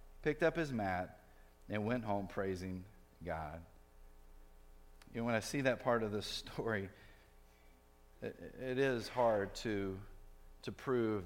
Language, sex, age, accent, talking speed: English, male, 40-59, American, 145 wpm